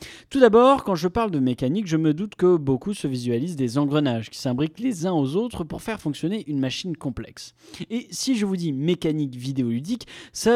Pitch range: 135-210 Hz